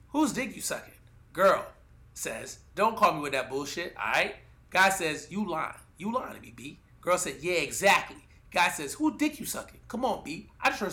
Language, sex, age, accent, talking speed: English, male, 30-49, American, 215 wpm